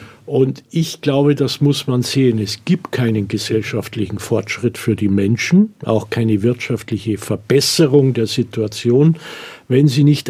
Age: 50-69